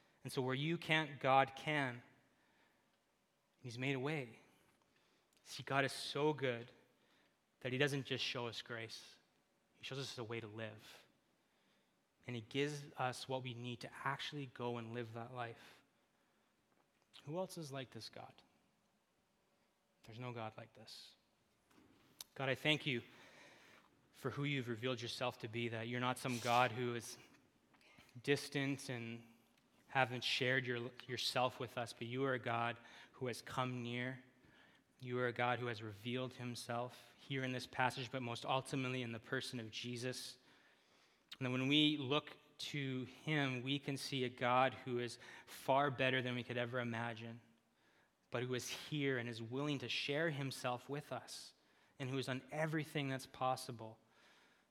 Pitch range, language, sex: 120-135 Hz, English, male